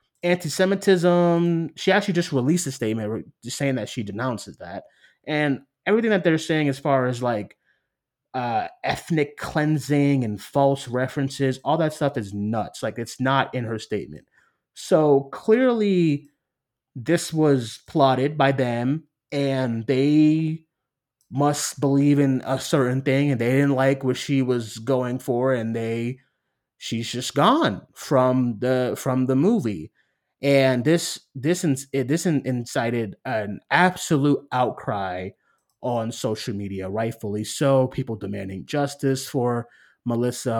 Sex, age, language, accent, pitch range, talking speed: male, 20-39, English, American, 125-145 Hz, 135 wpm